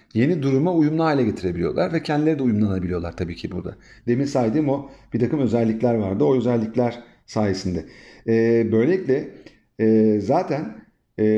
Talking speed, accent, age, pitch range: 140 wpm, native, 40-59, 110-140 Hz